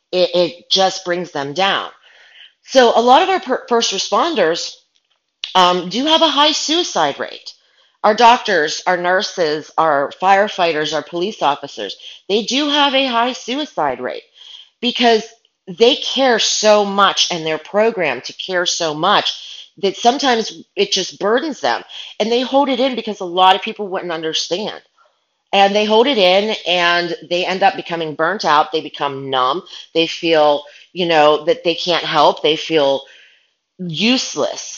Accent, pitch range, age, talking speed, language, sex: American, 165-235 Hz, 30-49, 160 wpm, English, female